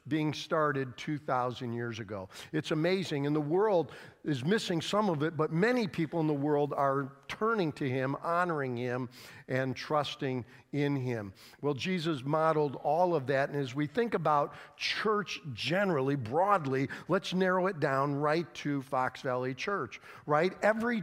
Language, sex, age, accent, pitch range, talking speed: English, male, 50-69, American, 150-200 Hz, 160 wpm